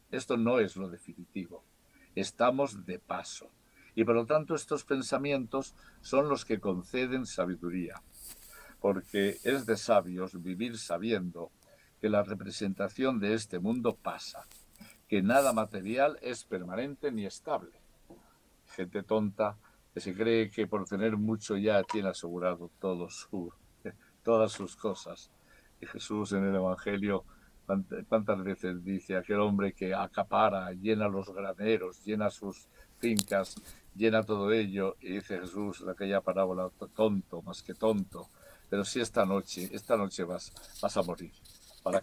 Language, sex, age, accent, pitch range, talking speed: Spanish, male, 60-79, Spanish, 95-110 Hz, 140 wpm